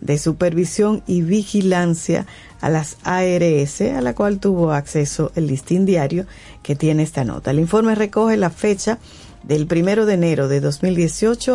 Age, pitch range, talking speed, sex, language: 40-59, 155-200 Hz, 155 wpm, female, Spanish